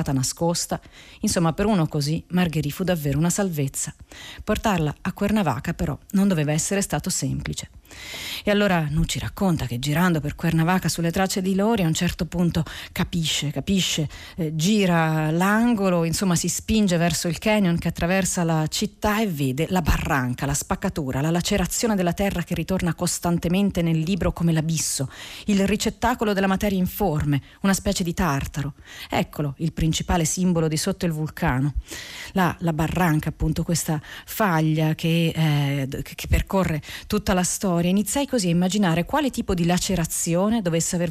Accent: native